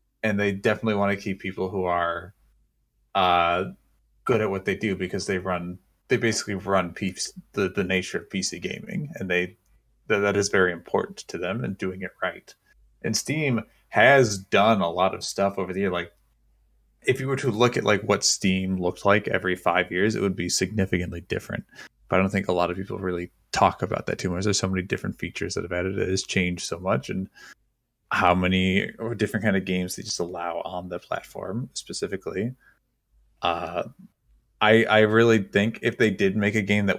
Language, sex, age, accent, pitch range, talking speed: English, male, 20-39, American, 90-110 Hz, 200 wpm